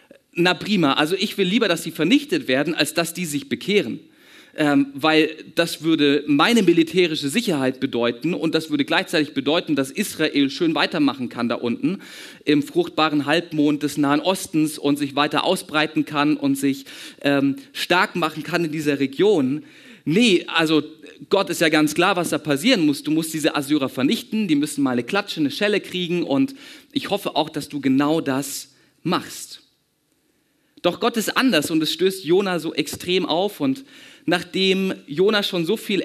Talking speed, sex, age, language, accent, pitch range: 175 wpm, male, 40-59, German, German, 155-210 Hz